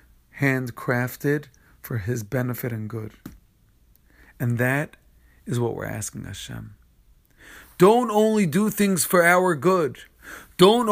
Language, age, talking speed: English, 40-59, 115 wpm